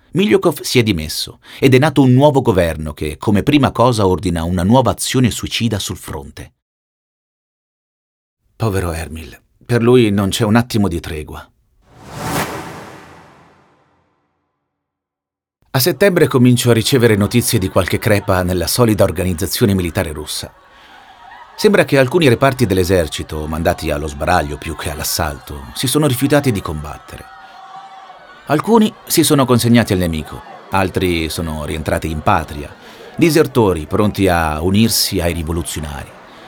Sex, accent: male, native